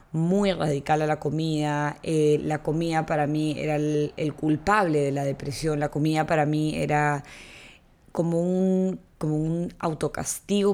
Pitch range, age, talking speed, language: 150-175 Hz, 20-39, 145 wpm, English